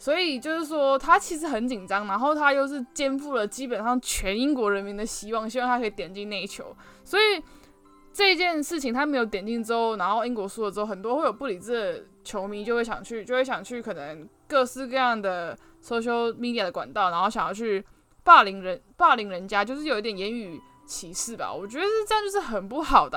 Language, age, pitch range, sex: Chinese, 10-29, 205-290 Hz, female